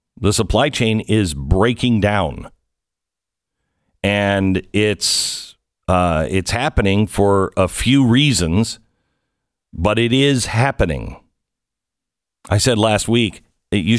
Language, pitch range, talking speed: English, 90-115 Hz, 105 wpm